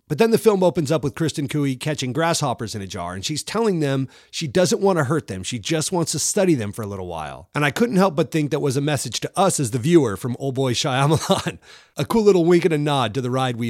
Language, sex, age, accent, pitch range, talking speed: English, male, 30-49, American, 125-185 Hz, 280 wpm